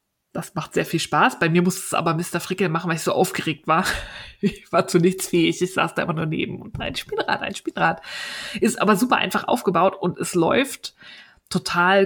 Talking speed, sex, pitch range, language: 215 wpm, female, 180-210 Hz, German